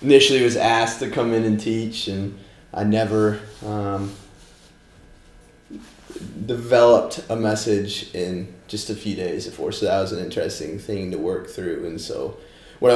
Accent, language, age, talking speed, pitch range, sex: American, English, 20-39, 155 wpm, 100-115 Hz, male